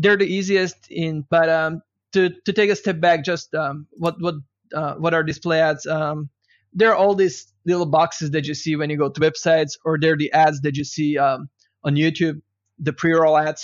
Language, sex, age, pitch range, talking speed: English, male, 20-39, 140-160 Hz, 215 wpm